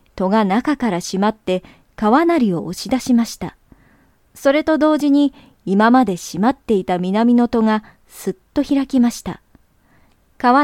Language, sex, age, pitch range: Japanese, male, 20-39, 195-255 Hz